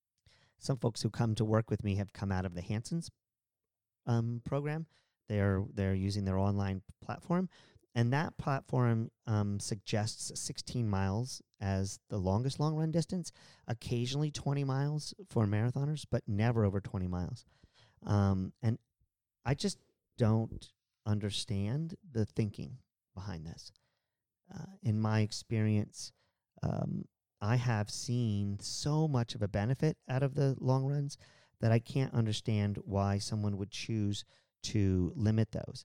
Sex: male